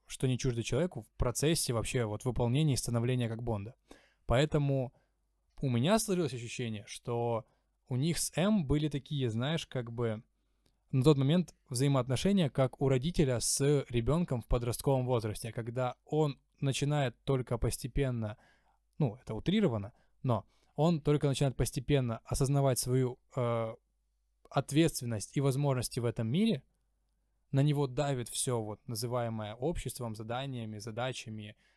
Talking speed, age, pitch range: 135 wpm, 20-39, 115-140 Hz